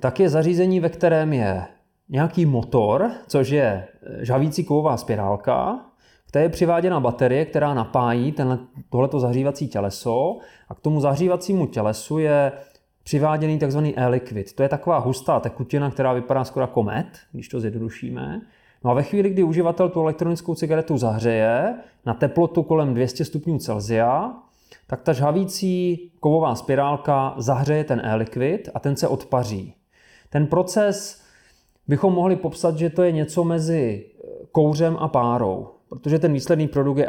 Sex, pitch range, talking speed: male, 125-165 Hz, 145 wpm